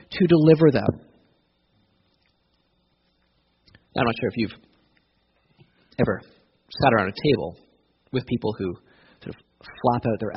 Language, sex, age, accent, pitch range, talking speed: English, male, 30-49, American, 105-170 Hz, 135 wpm